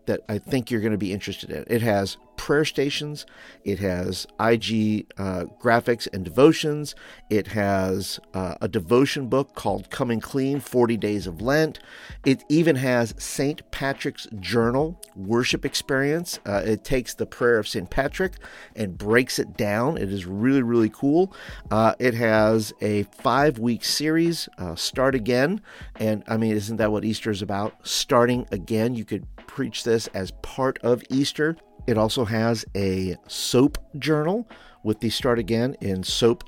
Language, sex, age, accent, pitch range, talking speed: English, male, 50-69, American, 100-130 Hz, 160 wpm